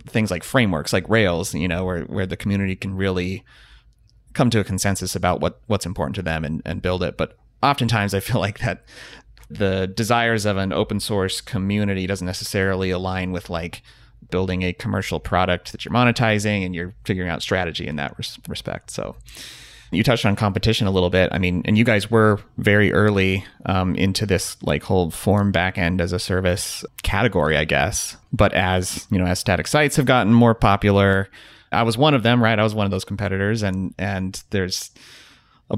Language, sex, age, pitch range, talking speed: English, male, 30-49, 90-110 Hz, 195 wpm